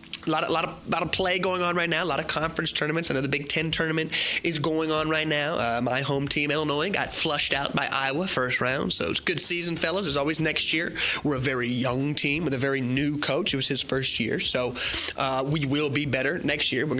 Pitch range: 135-175 Hz